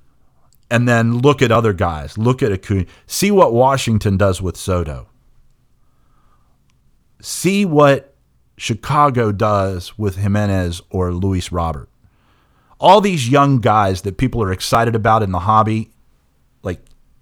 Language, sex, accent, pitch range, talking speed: English, male, American, 90-115 Hz, 130 wpm